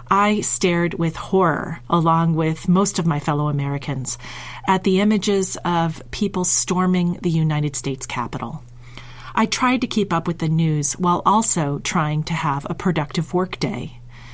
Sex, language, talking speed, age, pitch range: female, English, 160 wpm, 40-59, 140-185 Hz